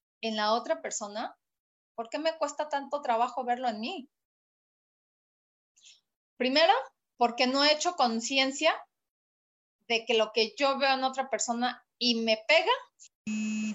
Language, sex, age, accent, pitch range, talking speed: Spanish, female, 30-49, Mexican, 225-285 Hz, 135 wpm